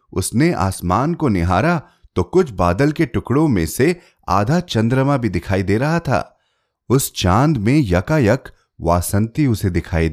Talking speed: 135 wpm